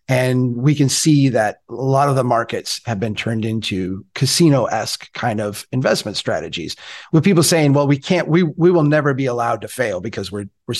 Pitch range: 120-155 Hz